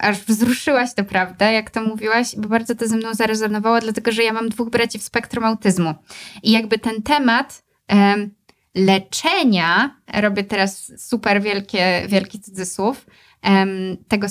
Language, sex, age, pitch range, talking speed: Polish, female, 20-39, 200-235 Hz, 140 wpm